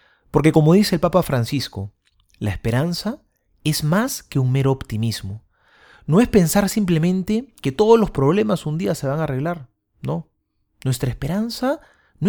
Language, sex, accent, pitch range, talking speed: Spanish, male, Argentinian, 115-190 Hz, 155 wpm